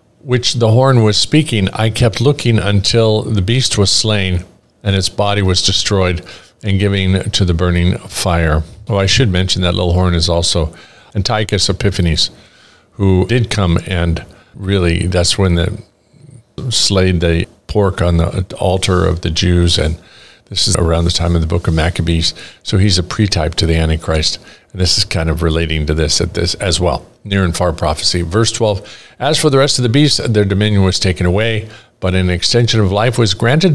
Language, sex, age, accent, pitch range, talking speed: English, male, 50-69, American, 90-115 Hz, 190 wpm